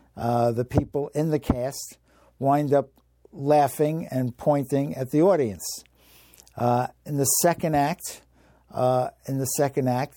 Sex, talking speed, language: male, 140 wpm, English